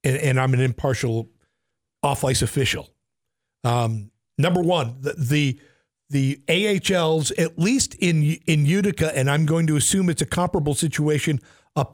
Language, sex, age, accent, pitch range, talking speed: English, male, 50-69, American, 125-160 Hz, 150 wpm